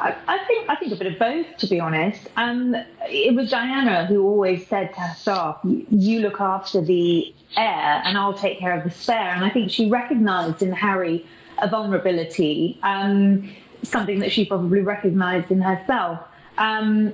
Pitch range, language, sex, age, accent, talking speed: 180-215 Hz, English, female, 30-49, British, 180 wpm